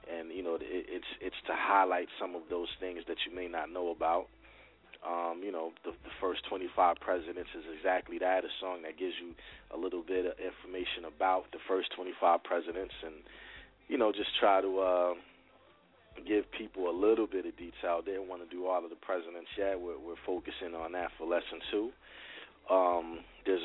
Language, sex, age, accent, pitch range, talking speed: English, male, 30-49, American, 85-95 Hz, 195 wpm